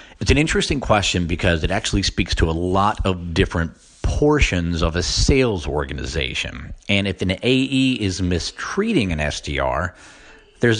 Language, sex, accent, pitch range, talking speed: English, male, American, 80-110 Hz, 150 wpm